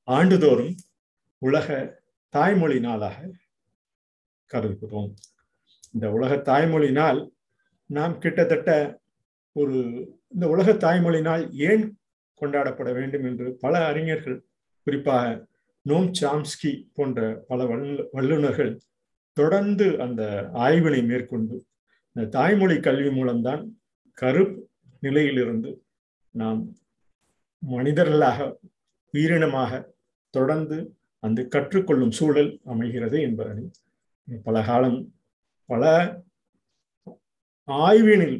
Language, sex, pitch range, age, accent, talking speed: Tamil, male, 120-160 Hz, 50-69, native, 75 wpm